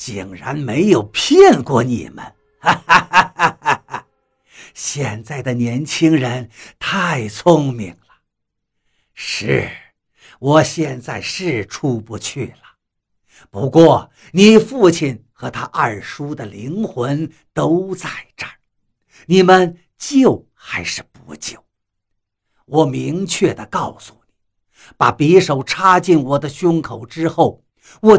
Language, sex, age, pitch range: Chinese, male, 60-79, 120-195 Hz